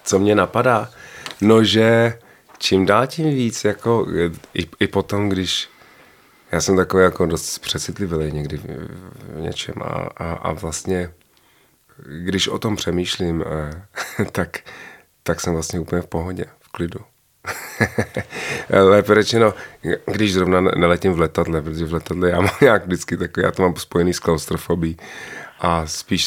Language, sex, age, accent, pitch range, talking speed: Czech, male, 30-49, native, 85-100 Hz, 145 wpm